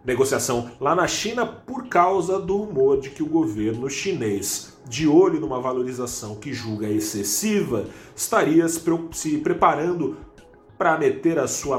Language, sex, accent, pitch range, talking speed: Portuguese, male, Brazilian, 110-145 Hz, 135 wpm